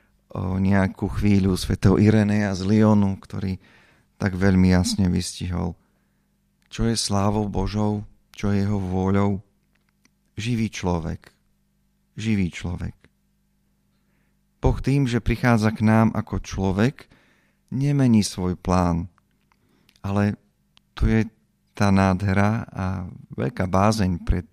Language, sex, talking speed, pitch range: Slovak, male, 110 wpm, 90-105 Hz